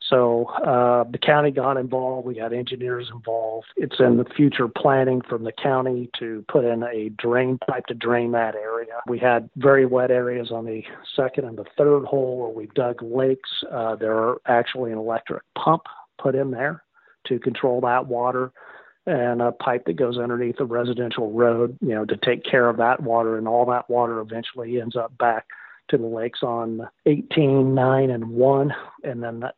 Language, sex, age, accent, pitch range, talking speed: English, male, 40-59, American, 115-130 Hz, 185 wpm